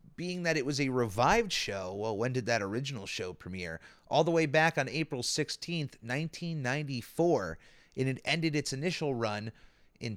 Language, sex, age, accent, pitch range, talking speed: English, male, 30-49, American, 115-155 Hz, 170 wpm